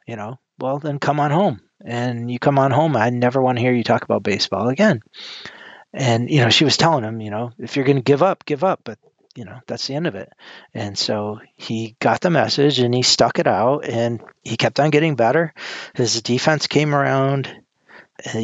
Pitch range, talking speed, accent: 110-130 Hz, 225 wpm, American